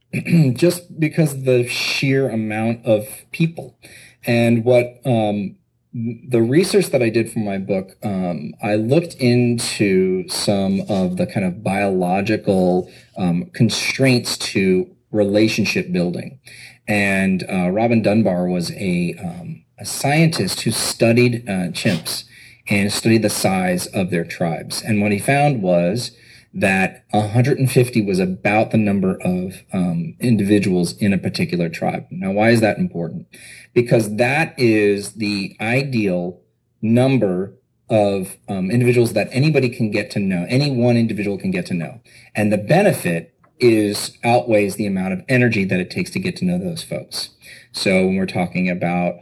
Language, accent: English, American